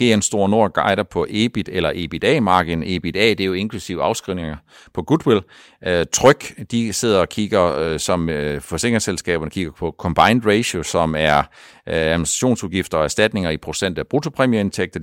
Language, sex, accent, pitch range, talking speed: Danish, male, native, 85-115 Hz, 165 wpm